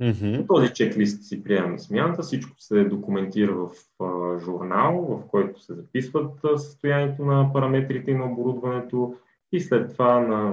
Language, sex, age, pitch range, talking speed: Bulgarian, male, 20-39, 100-135 Hz, 140 wpm